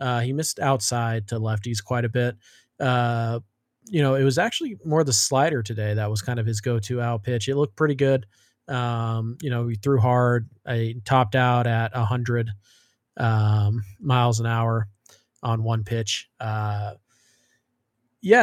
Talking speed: 165 wpm